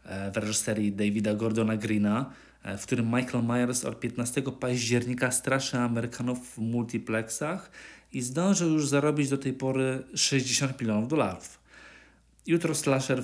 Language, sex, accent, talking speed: Polish, male, native, 125 wpm